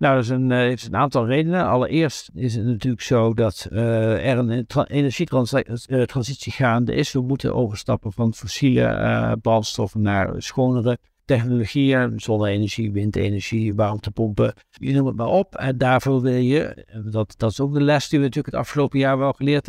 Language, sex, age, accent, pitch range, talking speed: Dutch, male, 60-79, Dutch, 110-135 Hz, 175 wpm